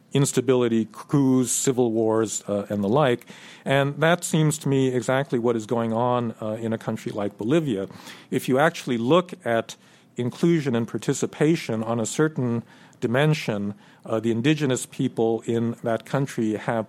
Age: 50-69